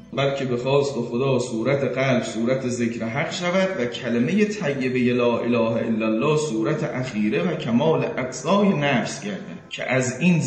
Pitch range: 120-155 Hz